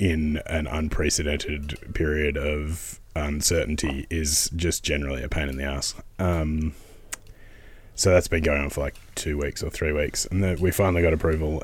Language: English